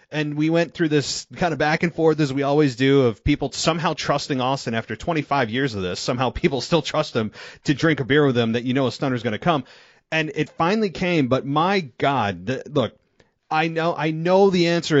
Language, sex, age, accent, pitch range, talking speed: English, male, 30-49, American, 125-165 Hz, 230 wpm